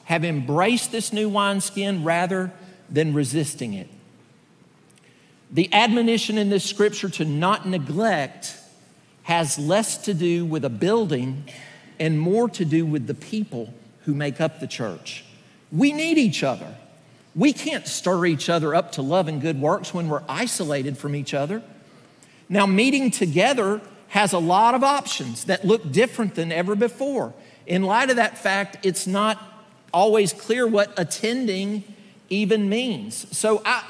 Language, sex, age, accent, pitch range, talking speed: English, male, 50-69, American, 145-205 Hz, 150 wpm